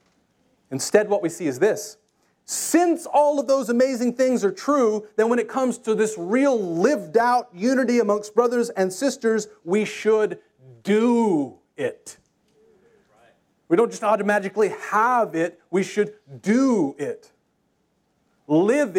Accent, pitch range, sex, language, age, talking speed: American, 190-250 Hz, male, English, 30-49, 135 wpm